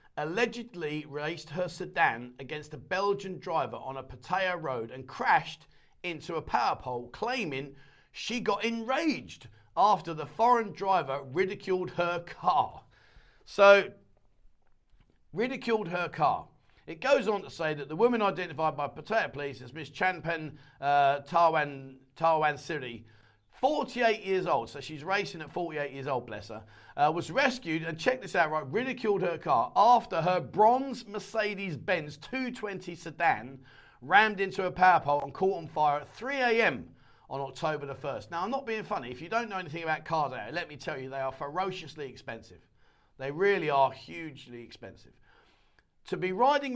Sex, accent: male, British